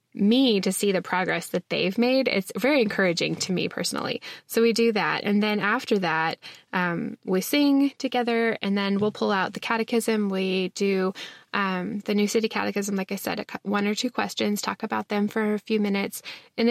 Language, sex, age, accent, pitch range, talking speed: English, female, 10-29, American, 200-235 Hz, 200 wpm